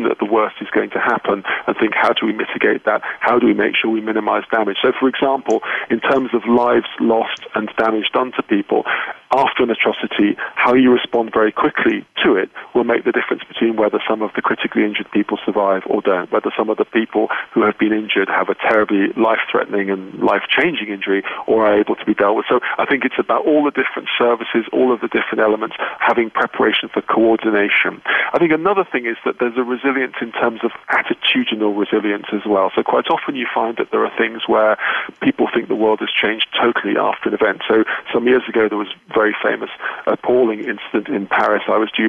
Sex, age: male, 40-59